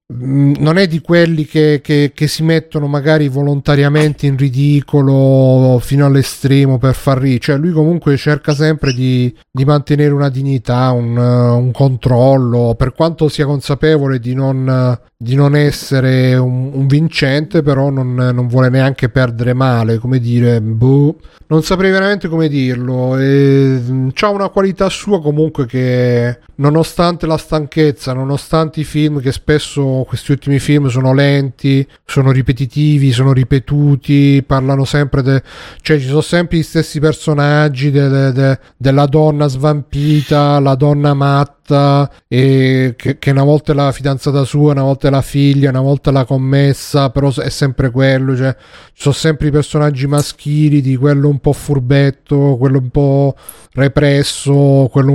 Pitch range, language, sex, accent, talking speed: 130-150 Hz, Italian, male, native, 155 wpm